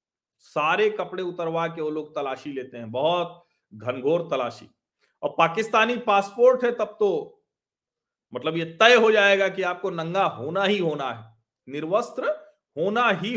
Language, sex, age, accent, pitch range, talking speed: Hindi, male, 40-59, native, 185-260 Hz, 150 wpm